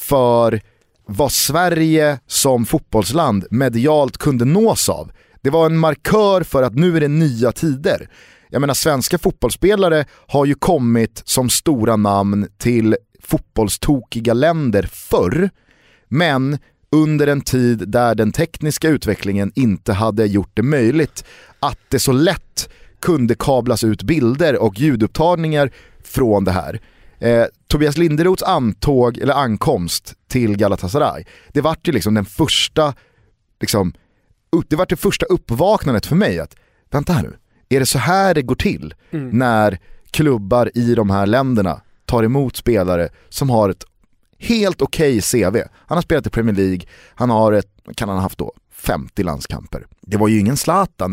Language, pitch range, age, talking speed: Swedish, 110-150 Hz, 30-49, 150 wpm